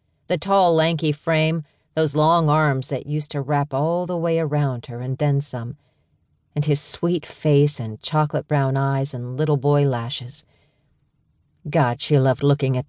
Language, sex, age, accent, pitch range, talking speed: English, female, 40-59, American, 140-175 Hz, 170 wpm